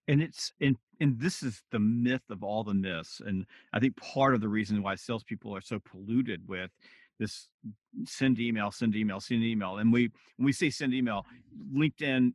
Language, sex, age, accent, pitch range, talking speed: English, male, 40-59, American, 105-130 Hz, 195 wpm